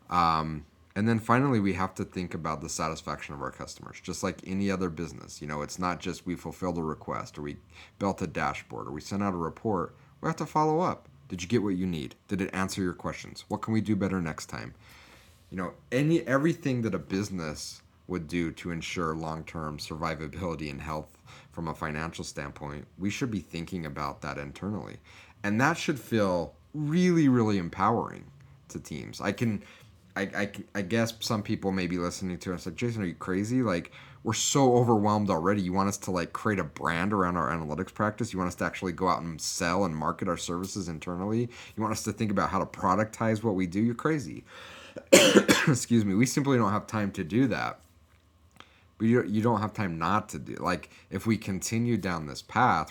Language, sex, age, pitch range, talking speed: English, male, 30-49, 85-110 Hz, 210 wpm